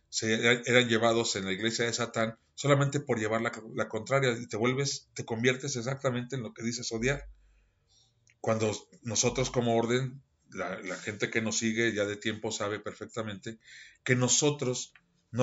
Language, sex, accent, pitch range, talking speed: Spanish, male, Mexican, 105-125 Hz, 165 wpm